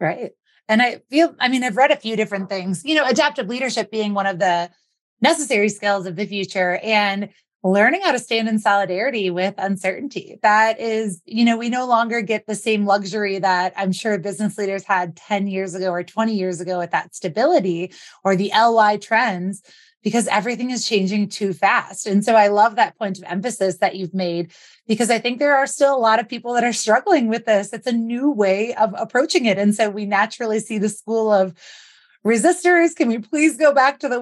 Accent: American